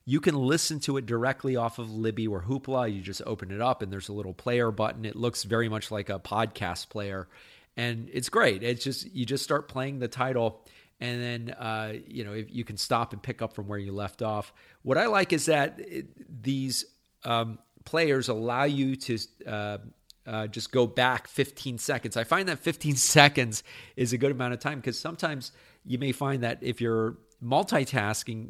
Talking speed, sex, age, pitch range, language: 205 wpm, male, 40-59, 110-135 Hz, English